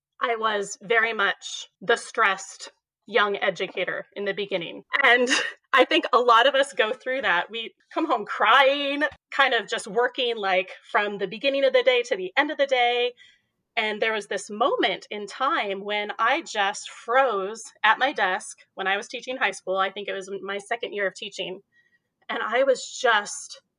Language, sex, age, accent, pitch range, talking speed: English, female, 30-49, American, 200-275 Hz, 190 wpm